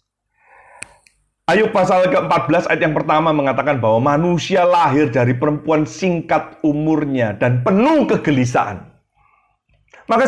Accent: native